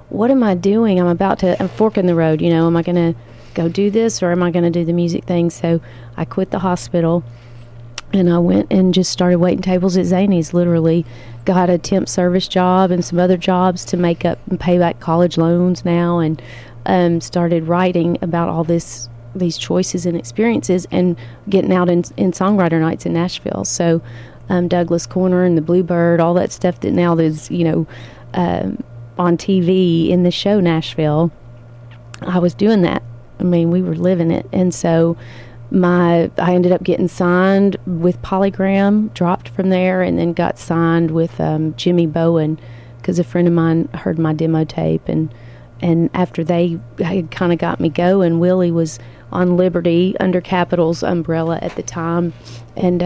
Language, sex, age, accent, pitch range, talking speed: English, female, 30-49, American, 160-185 Hz, 190 wpm